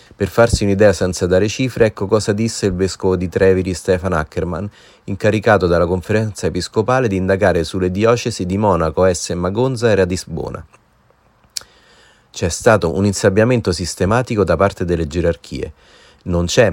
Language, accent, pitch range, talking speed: Italian, native, 90-110 Hz, 145 wpm